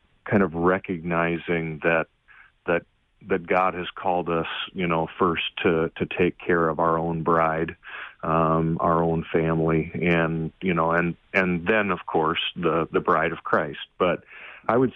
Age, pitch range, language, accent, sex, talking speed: 40-59, 80-90 Hz, English, American, male, 165 wpm